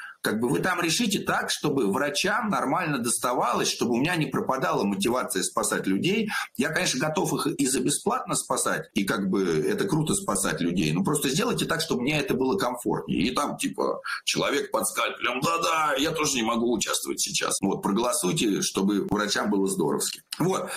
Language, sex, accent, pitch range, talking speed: Russian, male, native, 145-200 Hz, 175 wpm